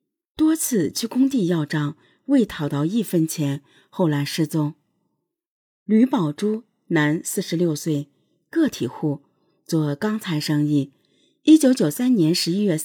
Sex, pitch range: female, 150-210 Hz